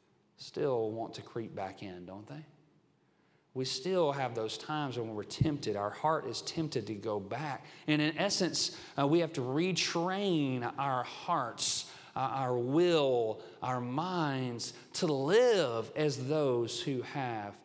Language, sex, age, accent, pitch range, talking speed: English, male, 40-59, American, 120-160 Hz, 150 wpm